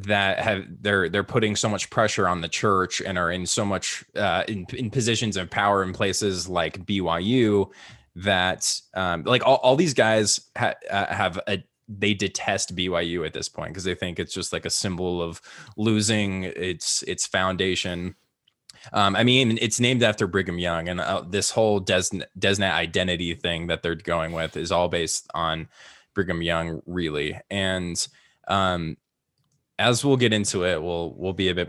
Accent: American